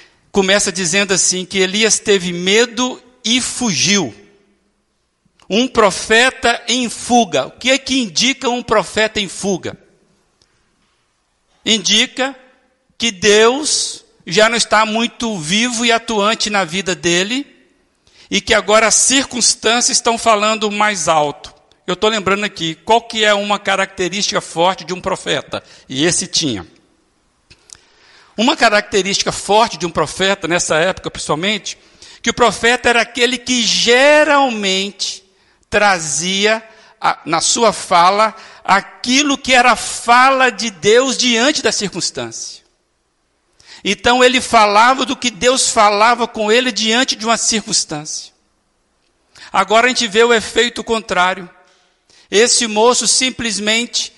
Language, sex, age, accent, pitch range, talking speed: Portuguese, male, 60-79, Brazilian, 195-240 Hz, 125 wpm